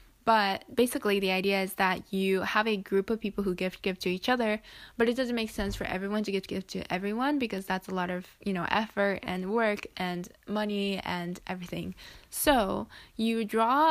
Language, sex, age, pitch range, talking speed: English, female, 10-29, 190-230 Hz, 205 wpm